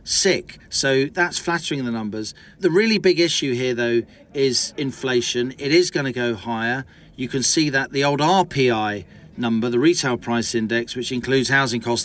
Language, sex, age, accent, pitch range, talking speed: English, male, 40-59, British, 120-145 Hz, 180 wpm